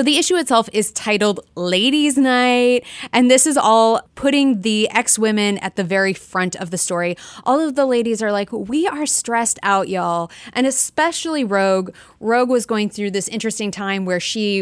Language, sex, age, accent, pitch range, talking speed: English, female, 30-49, American, 190-250 Hz, 180 wpm